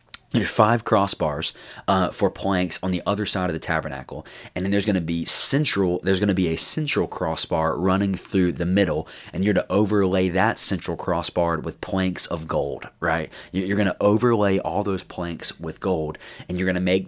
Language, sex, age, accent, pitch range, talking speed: English, male, 20-39, American, 85-105 Hz, 200 wpm